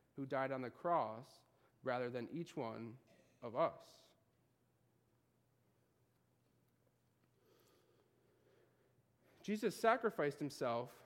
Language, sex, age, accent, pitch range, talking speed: English, male, 30-49, American, 120-190 Hz, 75 wpm